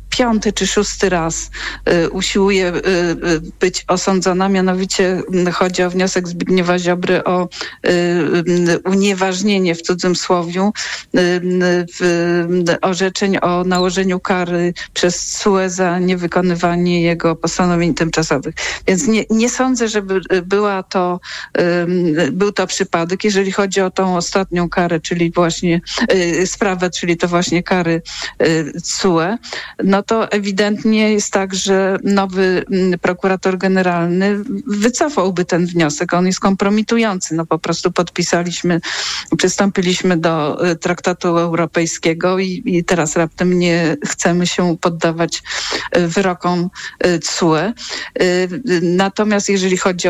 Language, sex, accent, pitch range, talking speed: Polish, female, native, 175-195 Hz, 120 wpm